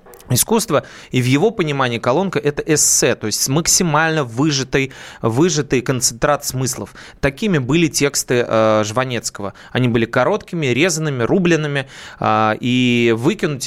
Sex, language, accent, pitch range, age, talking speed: male, Russian, native, 115-145 Hz, 20-39, 110 wpm